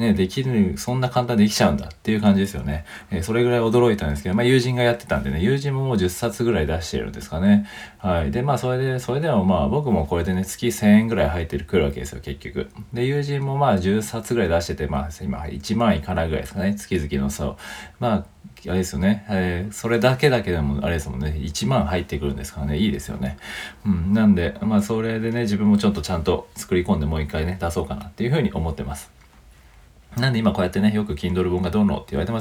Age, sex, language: 40-59, male, Japanese